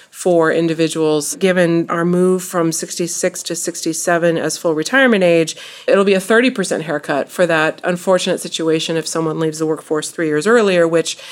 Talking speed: 165 wpm